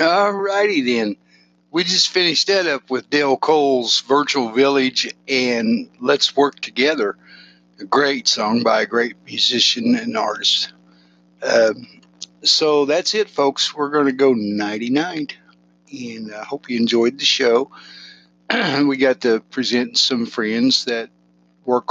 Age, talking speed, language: 60-79, 135 wpm, English